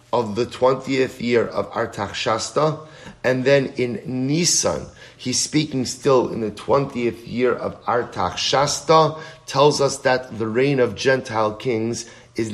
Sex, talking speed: male, 145 wpm